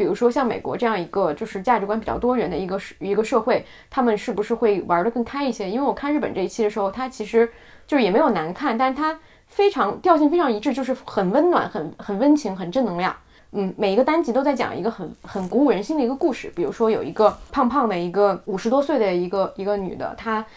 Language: Chinese